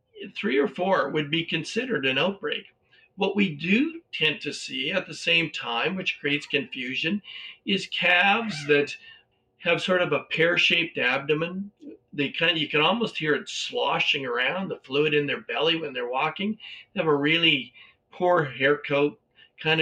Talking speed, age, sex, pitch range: 170 wpm, 50-69, male, 140-180 Hz